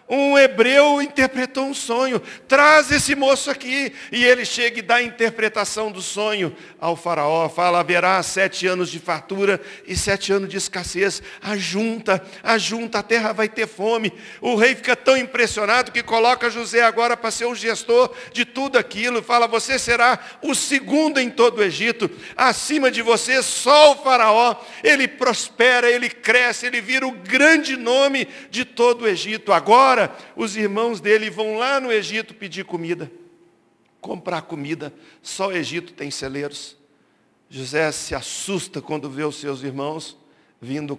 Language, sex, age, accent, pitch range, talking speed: Portuguese, male, 60-79, Brazilian, 180-245 Hz, 160 wpm